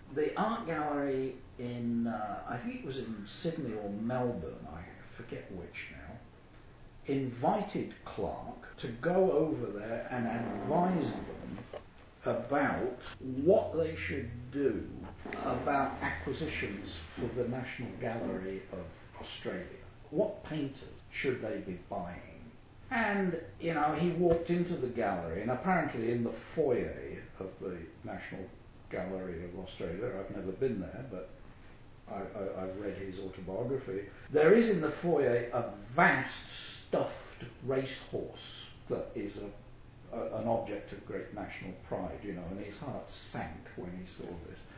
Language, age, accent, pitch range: English, 60-79, British, 95-155 Hz